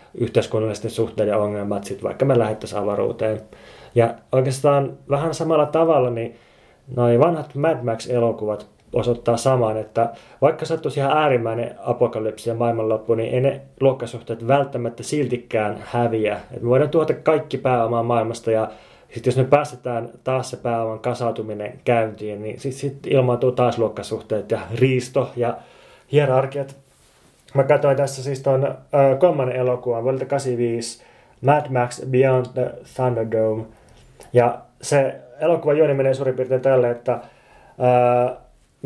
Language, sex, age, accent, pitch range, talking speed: Finnish, male, 20-39, native, 115-135 Hz, 135 wpm